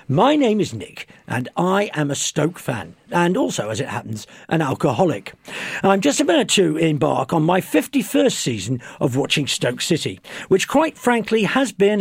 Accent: British